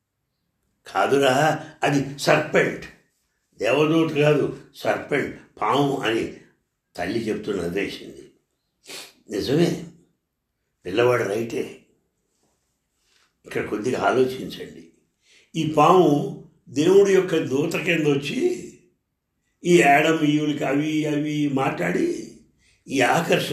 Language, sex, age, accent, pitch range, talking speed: English, male, 60-79, Indian, 125-170 Hz, 45 wpm